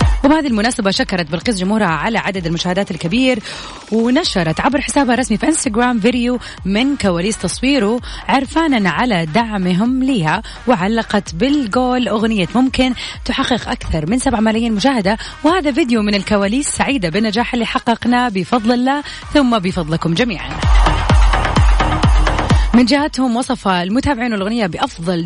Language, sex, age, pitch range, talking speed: Arabic, female, 30-49, 185-255 Hz, 125 wpm